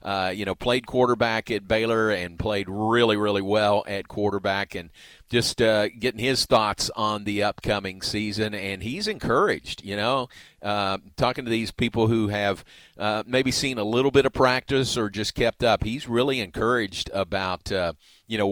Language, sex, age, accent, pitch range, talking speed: English, male, 40-59, American, 100-125 Hz, 180 wpm